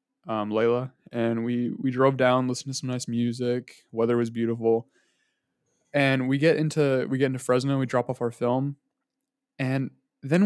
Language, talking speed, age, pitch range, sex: English, 170 wpm, 20-39, 120-155 Hz, male